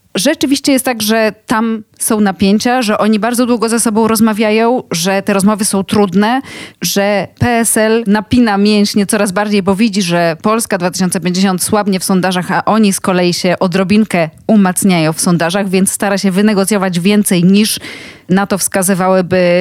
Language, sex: Polish, female